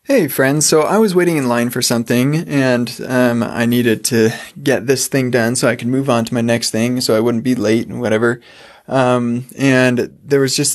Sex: male